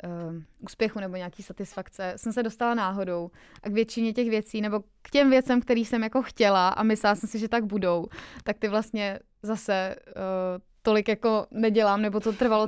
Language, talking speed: Czech, 190 wpm